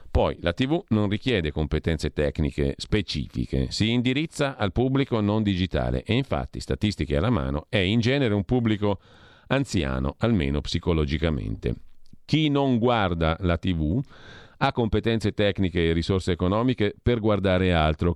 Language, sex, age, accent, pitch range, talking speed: Italian, male, 50-69, native, 80-105 Hz, 135 wpm